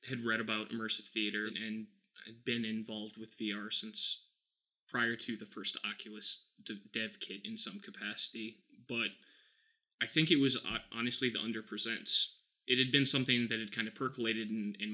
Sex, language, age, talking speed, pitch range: male, English, 20-39, 180 wpm, 110-130 Hz